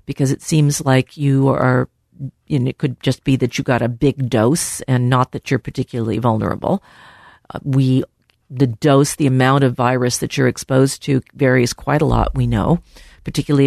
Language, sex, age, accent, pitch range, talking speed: English, female, 50-69, American, 125-150 Hz, 185 wpm